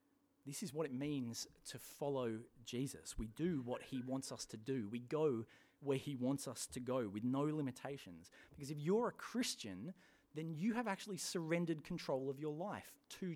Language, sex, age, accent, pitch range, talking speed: English, male, 30-49, Australian, 130-185 Hz, 190 wpm